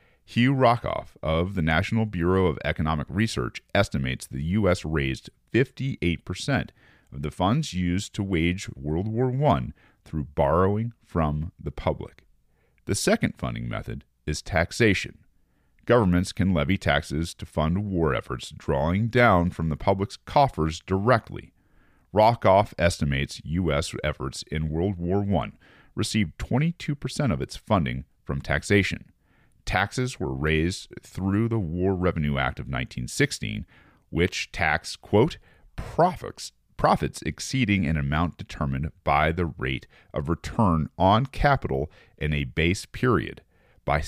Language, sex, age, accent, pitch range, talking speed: English, male, 40-59, American, 75-110 Hz, 130 wpm